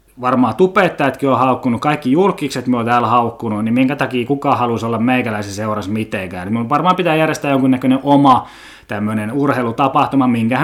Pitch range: 110-145 Hz